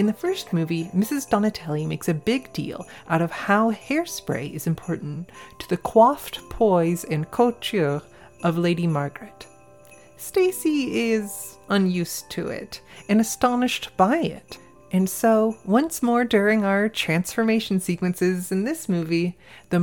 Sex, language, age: female, English, 30-49